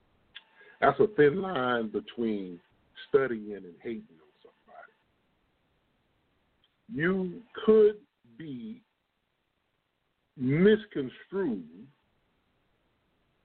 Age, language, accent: 50-69, English, American